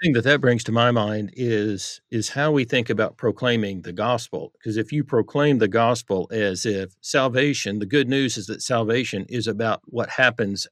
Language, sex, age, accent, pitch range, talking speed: English, male, 50-69, American, 105-130 Hz, 195 wpm